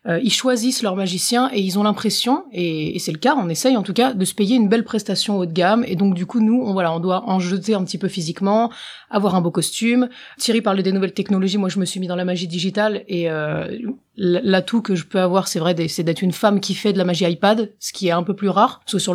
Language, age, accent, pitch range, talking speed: French, 30-49, French, 180-225 Hz, 275 wpm